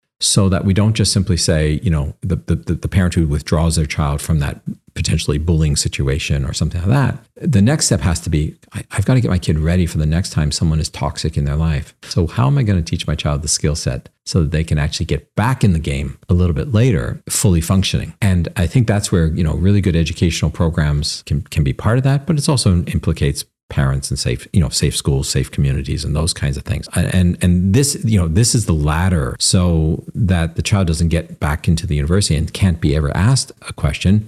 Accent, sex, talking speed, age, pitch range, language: American, male, 245 wpm, 50-69, 80-100 Hz, English